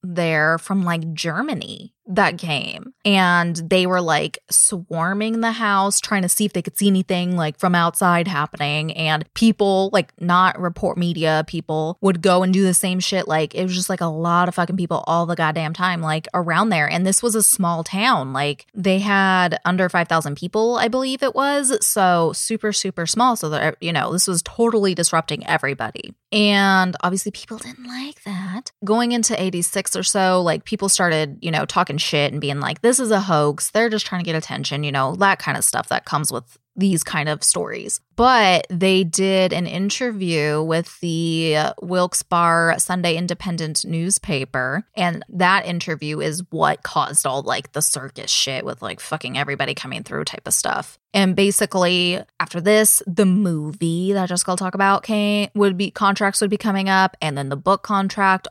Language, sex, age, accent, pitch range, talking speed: English, female, 20-39, American, 165-200 Hz, 190 wpm